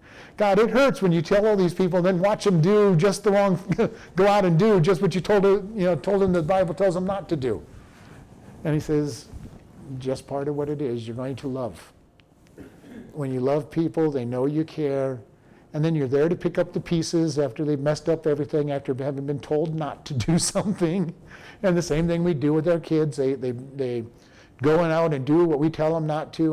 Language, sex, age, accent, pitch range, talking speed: English, male, 50-69, American, 140-170 Hz, 235 wpm